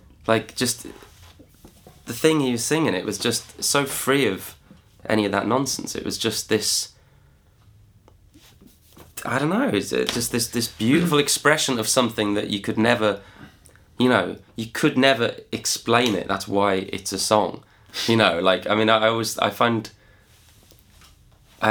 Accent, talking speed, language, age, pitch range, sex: British, 165 wpm, English, 20-39, 95-120 Hz, male